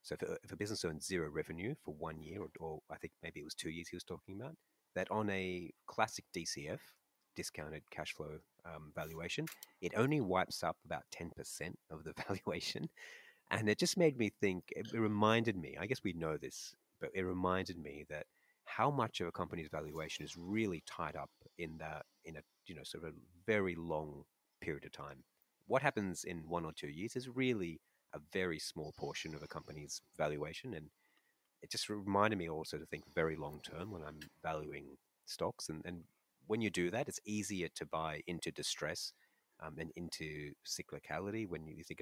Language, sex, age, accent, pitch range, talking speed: English, male, 30-49, Australian, 80-105 Hz, 195 wpm